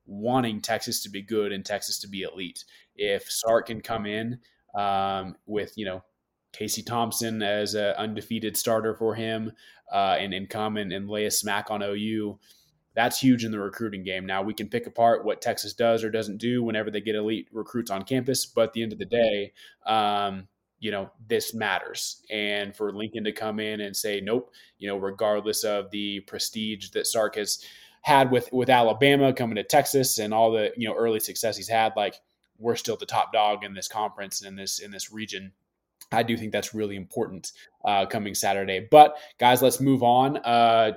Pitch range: 105-120 Hz